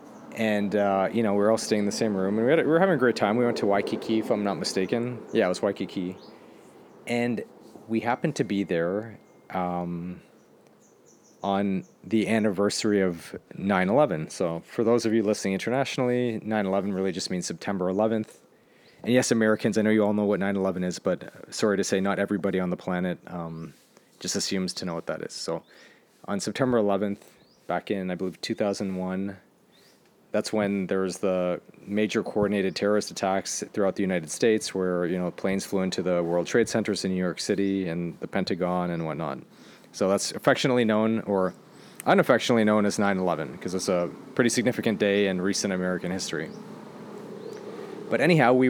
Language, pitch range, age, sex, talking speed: English, 95-110 Hz, 30-49, male, 180 wpm